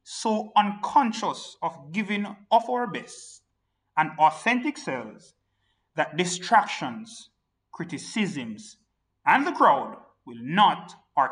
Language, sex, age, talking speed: English, male, 30-49, 100 wpm